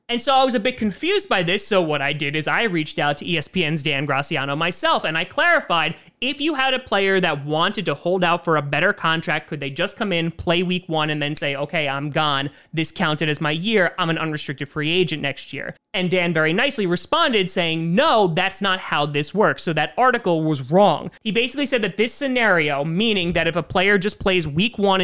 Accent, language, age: American, English, 30-49